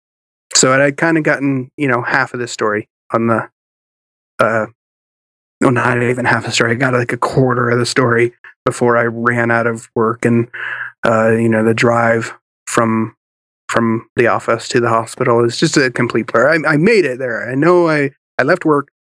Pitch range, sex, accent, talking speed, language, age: 115-130 Hz, male, American, 200 wpm, English, 30-49